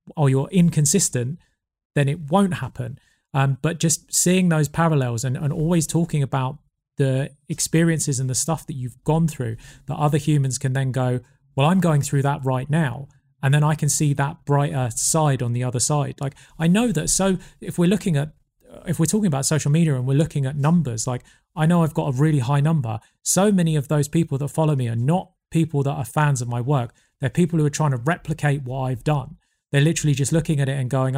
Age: 30-49